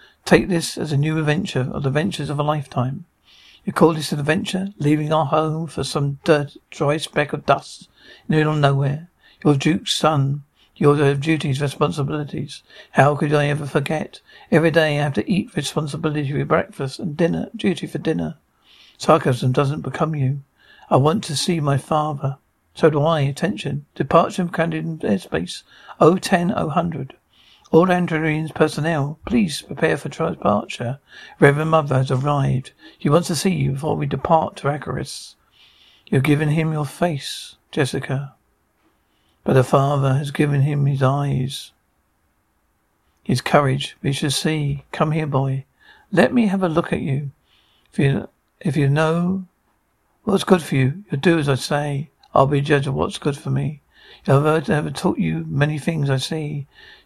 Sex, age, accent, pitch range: male, 60-79, British, 140-160 Hz